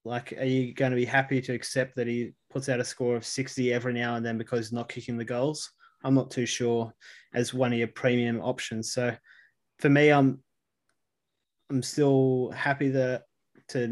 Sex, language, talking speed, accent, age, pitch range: male, English, 200 wpm, Australian, 20-39, 120-135 Hz